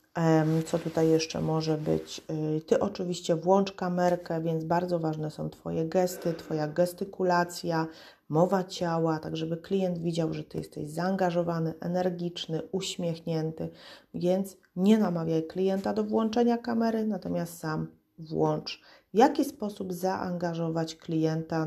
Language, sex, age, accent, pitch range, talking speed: Polish, female, 30-49, native, 160-190 Hz, 120 wpm